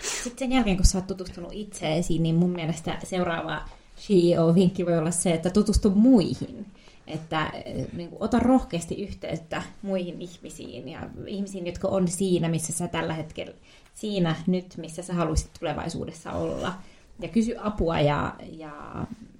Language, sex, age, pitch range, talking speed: Finnish, female, 20-39, 160-195 Hz, 150 wpm